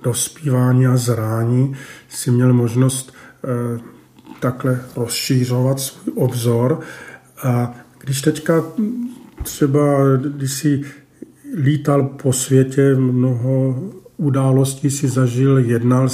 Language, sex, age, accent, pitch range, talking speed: Czech, male, 50-69, native, 130-145 Hz, 90 wpm